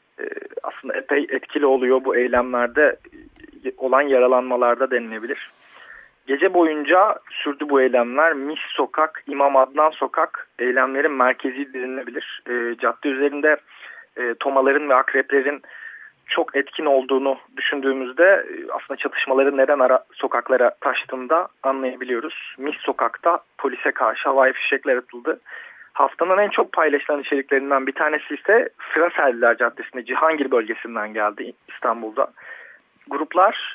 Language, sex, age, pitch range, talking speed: Turkish, male, 40-59, 130-175 Hz, 105 wpm